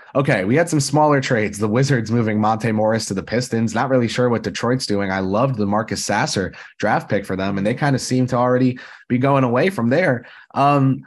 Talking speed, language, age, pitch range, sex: 230 wpm, English, 20-39, 105-135 Hz, male